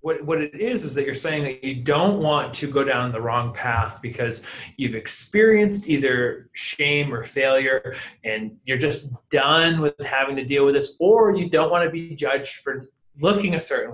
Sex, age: male, 30-49